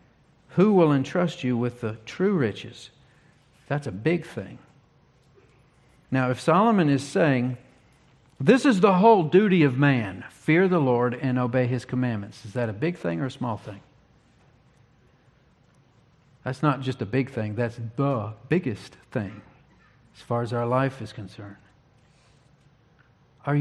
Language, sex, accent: English, male, American